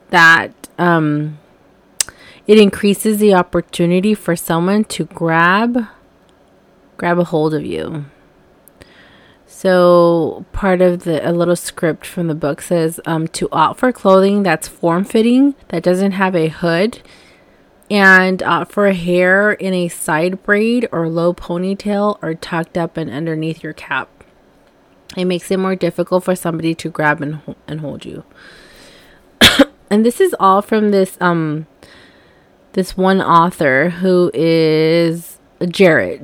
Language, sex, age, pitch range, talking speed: English, female, 20-39, 165-205 Hz, 140 wpm